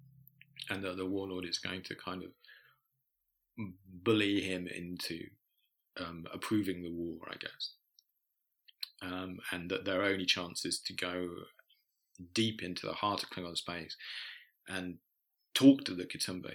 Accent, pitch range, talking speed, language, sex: British, 90-105 Hz, 140 wpm, English, male